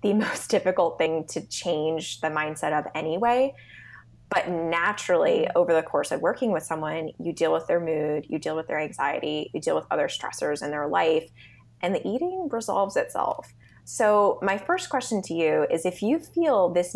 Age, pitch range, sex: 20-39, 155-195 Hz, female